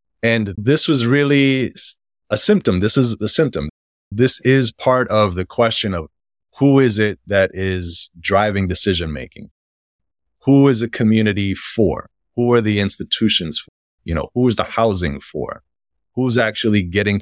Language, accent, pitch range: English, American, 90-110 Hz